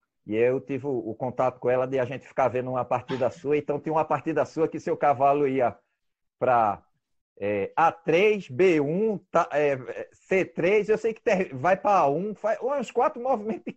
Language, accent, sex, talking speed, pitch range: Portuguese, Brazilian, male, 185 wpm, 140-195 Hz